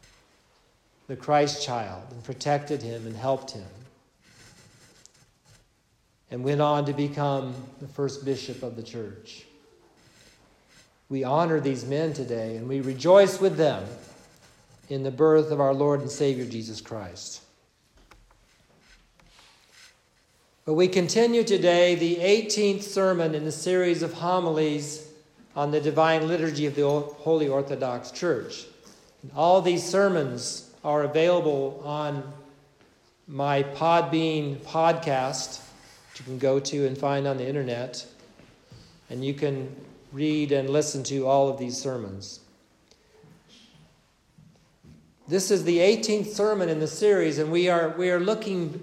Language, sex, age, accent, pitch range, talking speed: English, male, 50-69, American, 135-170 Hz, 130 wpm